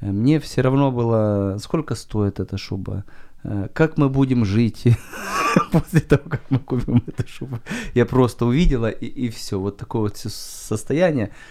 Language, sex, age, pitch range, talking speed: Ukrainian, male, 30-49, 105-140 Hz, 145 wpm